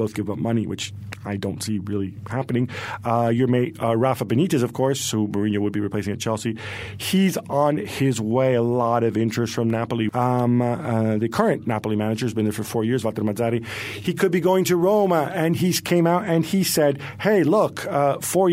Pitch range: 105-130 Hz